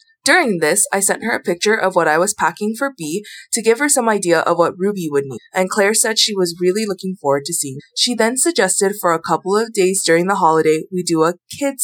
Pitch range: 170-225 Hz